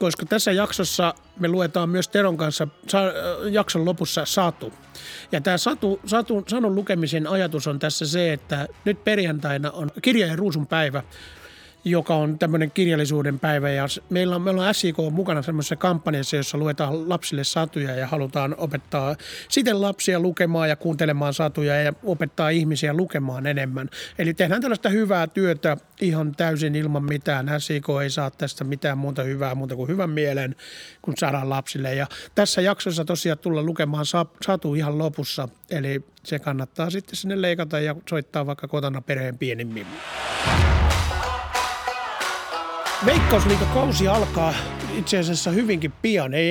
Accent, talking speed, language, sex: native, 140 wpm, Finnish, male